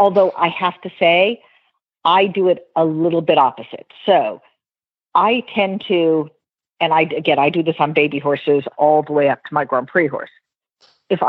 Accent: American